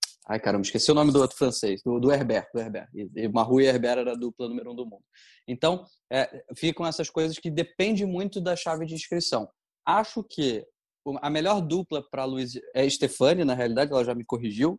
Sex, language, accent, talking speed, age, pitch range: male, Portuguese, Brazilian, 210 wpm, 20-39, 120-145 Hz